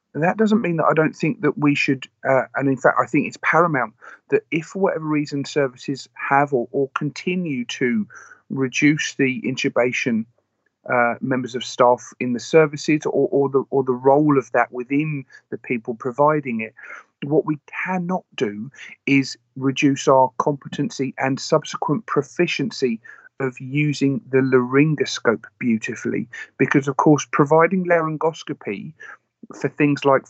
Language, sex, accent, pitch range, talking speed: English, male, British, 130-160 Hz, 155 wpm